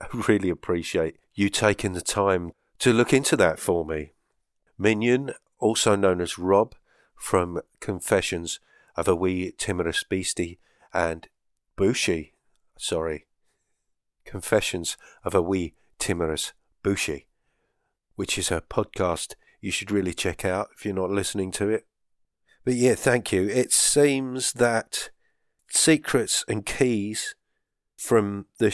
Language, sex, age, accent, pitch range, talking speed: English, male, 40-59, British, 90-110 Hz, 125 wpm